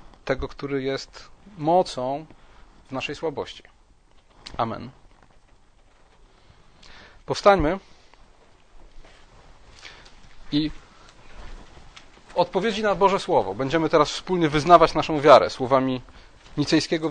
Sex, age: male, 40-59